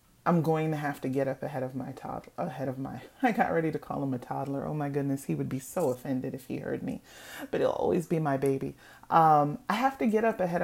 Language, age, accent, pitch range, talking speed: English, 30-49, American, 145-225 Hz, 265 wpm